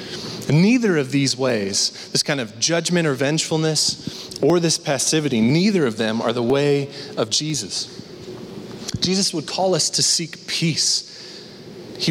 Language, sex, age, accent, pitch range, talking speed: English, male, 30-49, American, 140-185 Hz, 145 wpm